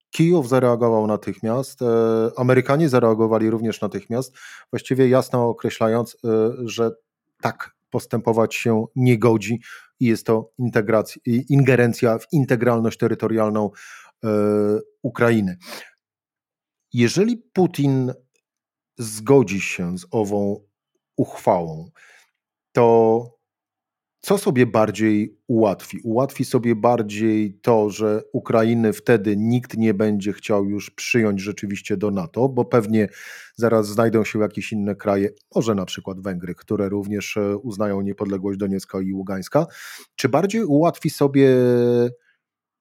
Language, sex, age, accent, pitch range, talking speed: Polish, male, 40-59, native, 105-130 Hz, 105 wpm